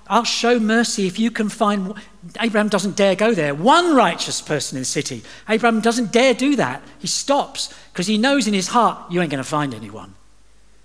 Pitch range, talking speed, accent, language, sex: 140-210 Hz, 205 wpm, British, English, male